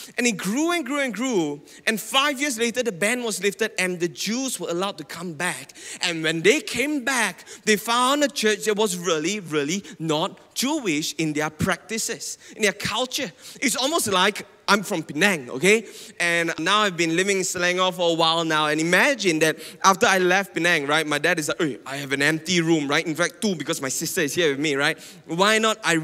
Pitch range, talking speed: 165-220 Hz, 215 wpm